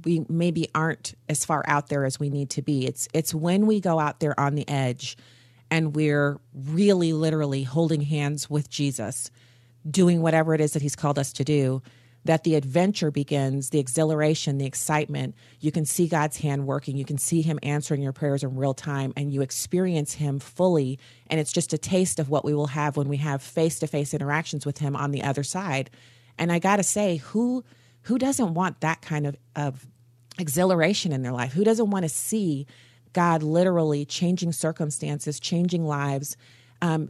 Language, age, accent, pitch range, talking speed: English, 40-59, American, 140-175 Hz, 190 wpm